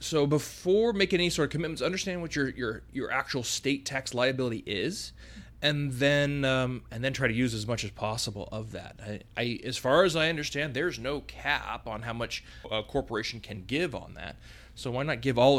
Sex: male